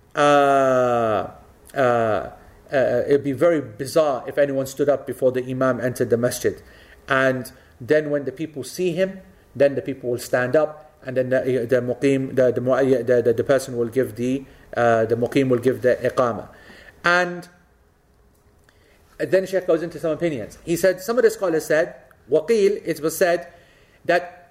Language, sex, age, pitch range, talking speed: English, male, 40-59, 140-185 Hz, 170 wpm